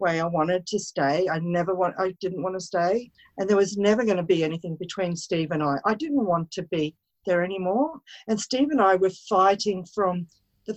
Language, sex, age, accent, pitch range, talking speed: English, female, 50-69, Australian, 185-235 Hz, 225 wpm